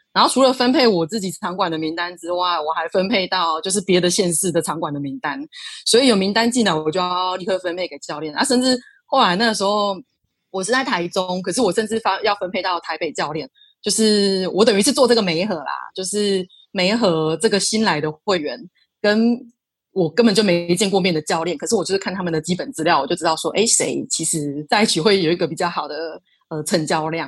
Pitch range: 170-220 Hz